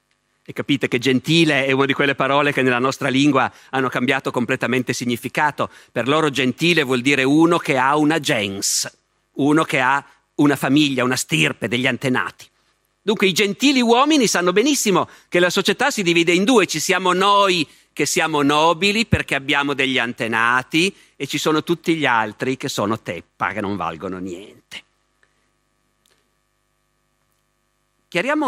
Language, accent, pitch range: Italian, native, 135-180 Hz